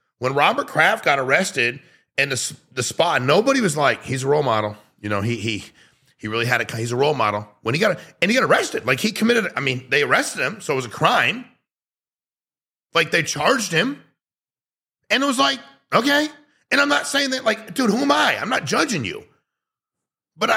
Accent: American